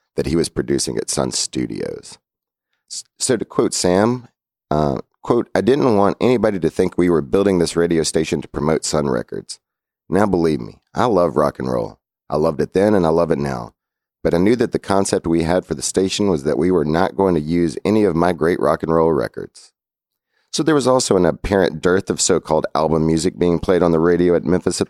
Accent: American